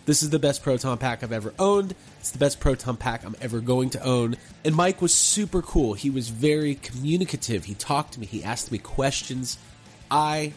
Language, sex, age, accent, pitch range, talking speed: English, male, 30-49, American, 125-175 Hz, 210 wpm